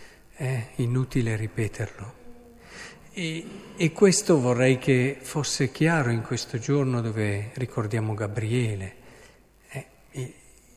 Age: 50-69